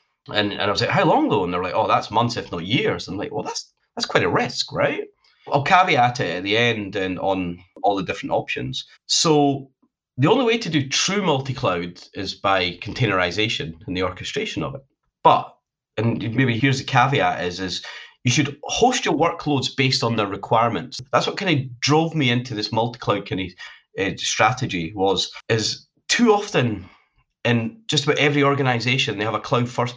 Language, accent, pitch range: English, British, 115-150 Hz